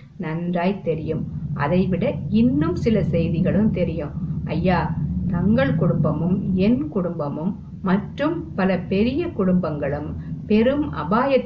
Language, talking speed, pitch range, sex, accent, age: Tamil, 80 wpm, 165-215 Hz, female, native, 50-69